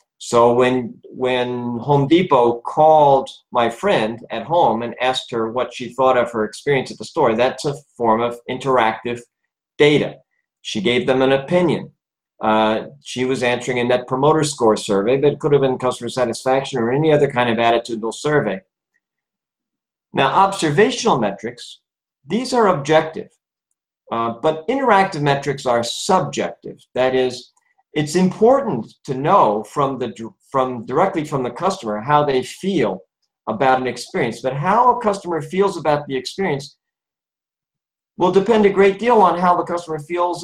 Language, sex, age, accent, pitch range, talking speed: English, male, 50-69, American, 125-165 Hz, 155 wpm